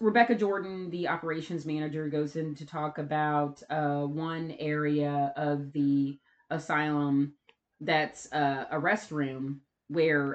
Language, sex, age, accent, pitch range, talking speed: English, female, 30-49, American, 145-160 Hz, 120 wpm